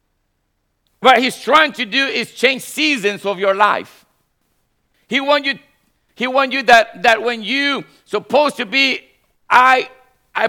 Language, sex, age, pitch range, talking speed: English, male, 50-69, 220-275 Hz, 145 wpm